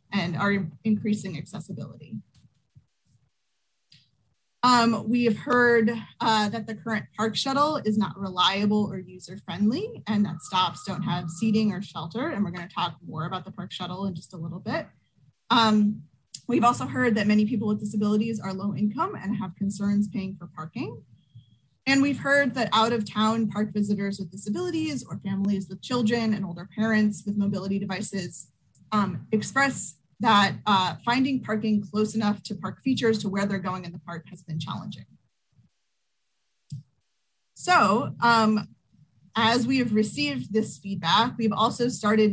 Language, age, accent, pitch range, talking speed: English, 20-39, American, 190-220 Hz, 160 wpm